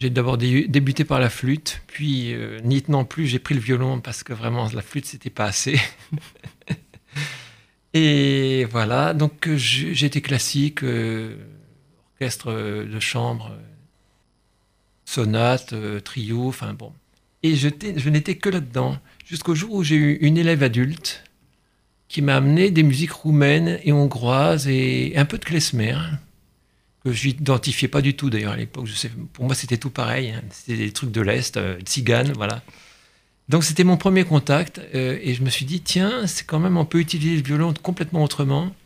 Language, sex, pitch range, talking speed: French, male, 120-150 Hz, 170 wpm